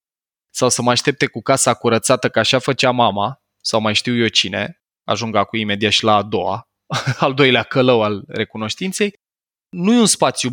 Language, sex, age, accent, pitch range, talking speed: Romanian, male, 20-39, native, 120-150 Hz, 180 wpm